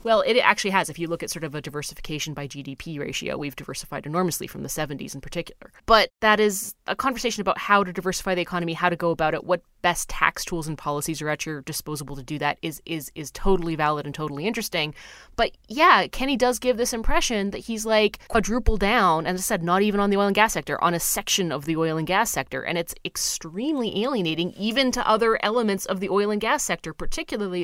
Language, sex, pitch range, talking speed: English, female, 155-200 Hz, 235 wpm